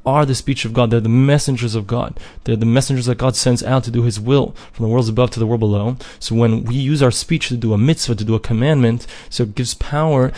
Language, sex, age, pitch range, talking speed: English, male, 20-39, 115-140 Hz, 270 wpm